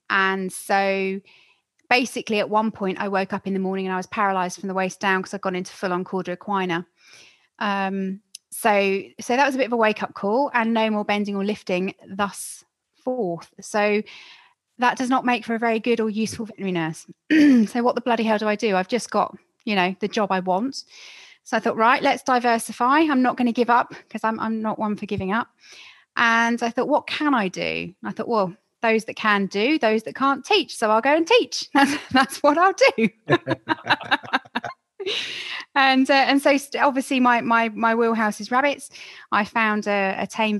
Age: 20-39